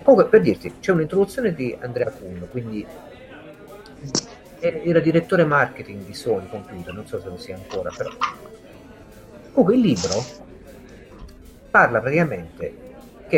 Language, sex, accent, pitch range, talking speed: Italian, male, native, 125-200 Hz, 125 wpm